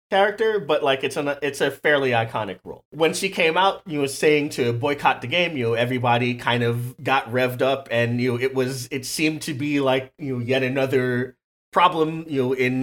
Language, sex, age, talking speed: English, male, 30-49, 225 wpm